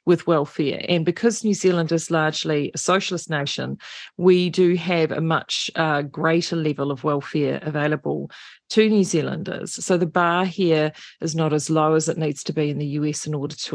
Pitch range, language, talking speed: 155-185 Hz, English, 190 wpm